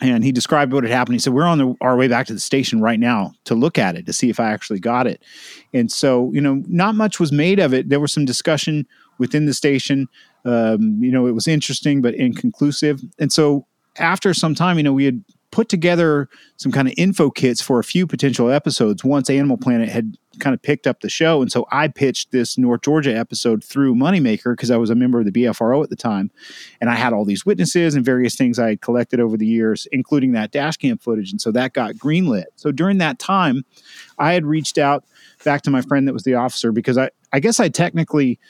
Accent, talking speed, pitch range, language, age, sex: American, 240 wpm, 125-160 Hz, English, 30-49, male